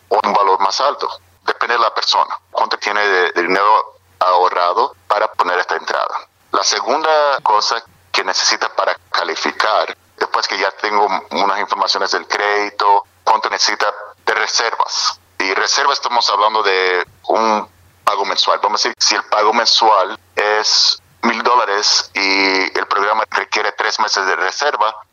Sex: male